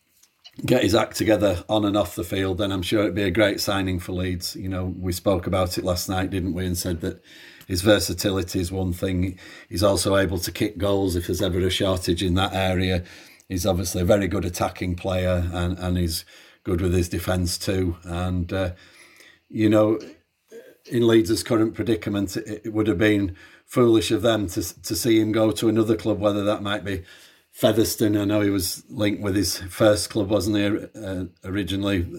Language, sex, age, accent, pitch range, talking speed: English, male, 40-59, British, 90-105 Hz, 200 wpm